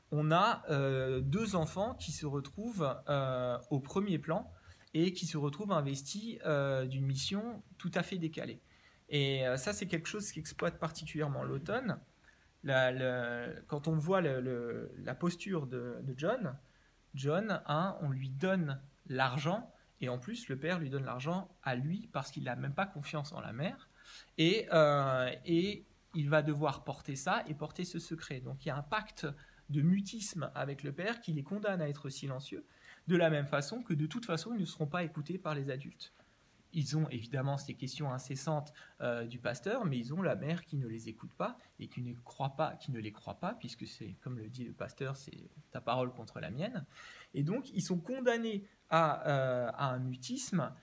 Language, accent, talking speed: French, French, 200 wpm